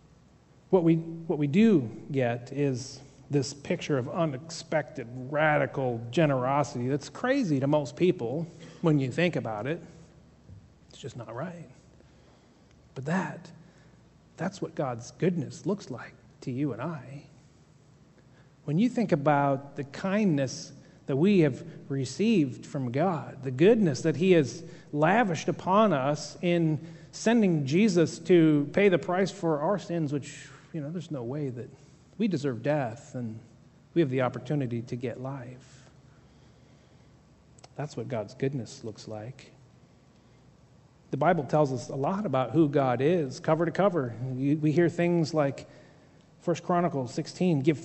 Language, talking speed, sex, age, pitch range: English, 145 wpm, male, 40-59, 135-170 Hz